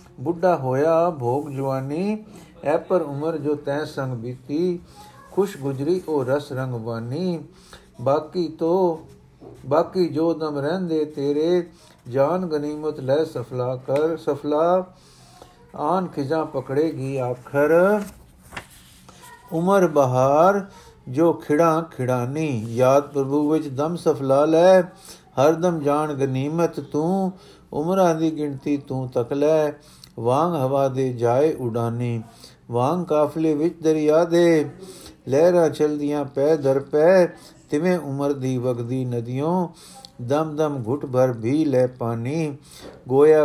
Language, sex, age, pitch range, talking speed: Punjabi, male, 50-69, 135-165 Hz, 115 wpm